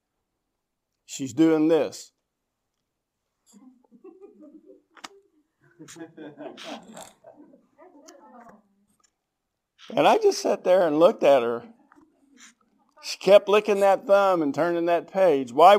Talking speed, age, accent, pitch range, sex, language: 85 wpm, 50-69, American, 130-210 Hz, male, English